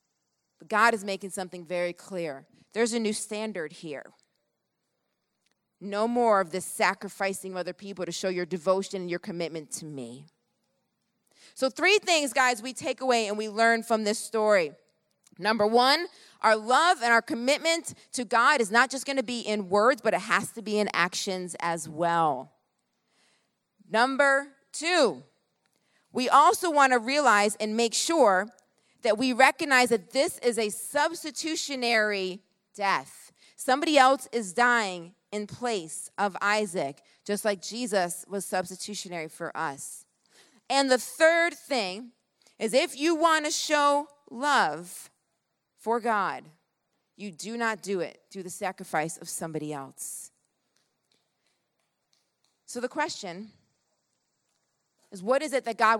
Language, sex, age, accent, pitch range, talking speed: English, female, 30-49, American, 185-255 Hz, 145 wpm